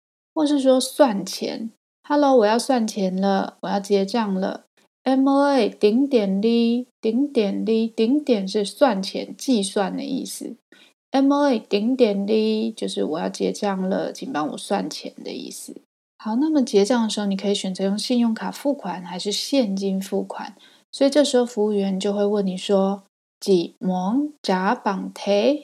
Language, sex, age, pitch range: Chinese, female, 20-39, 195-250 Hz